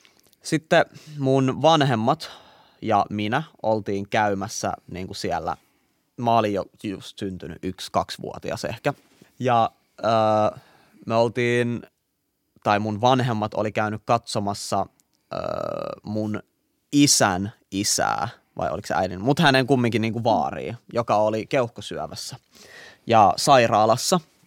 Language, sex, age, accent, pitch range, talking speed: Finnish, male, 20-39, native, 105-135 Hz, 115 wpm